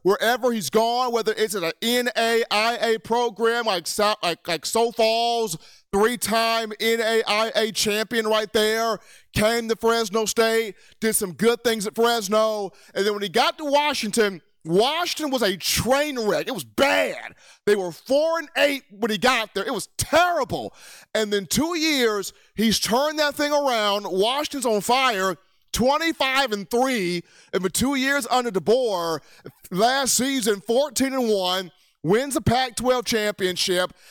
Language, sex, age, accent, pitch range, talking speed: English, male, 40-59, American, 205-255 Hz, 150 wpm